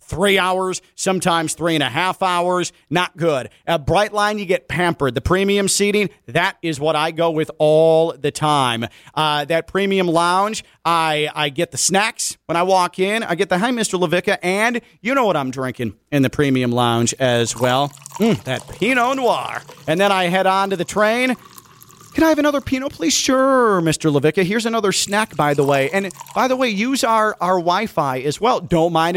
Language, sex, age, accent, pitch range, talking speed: English, male, 40-59, American, 150-210 Hz, 200 wpm